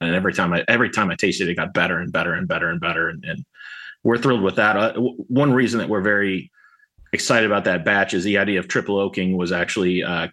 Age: 30-49